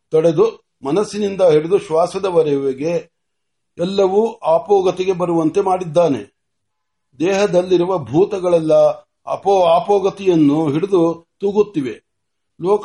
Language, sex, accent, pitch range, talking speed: Marathi, male, native, 155-195 Hz, 55 wpm